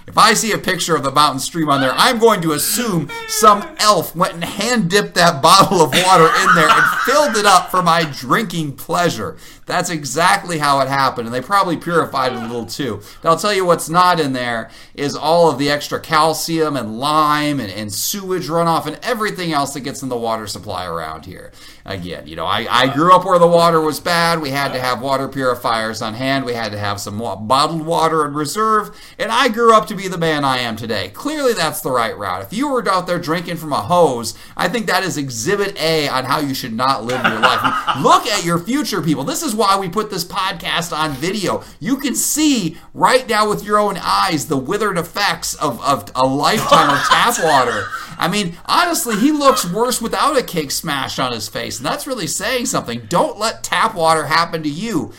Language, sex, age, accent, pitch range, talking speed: English, male, 40-59, American, 135-200 Hz, 220 wpm